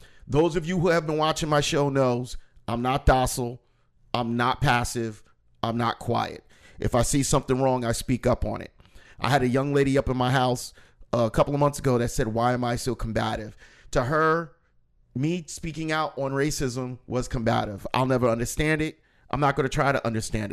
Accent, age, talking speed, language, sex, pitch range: American, 40-59, 200 wpm, English, male, 115-155 Hz